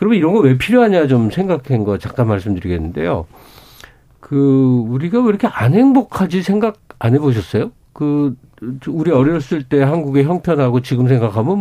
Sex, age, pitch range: male, 50-69, 120-170 Hz